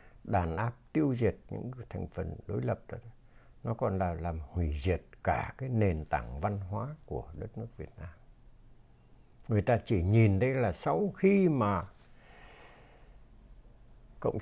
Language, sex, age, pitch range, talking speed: Vietnamese, male, 60-79, 90-125 Hz, 155 wpm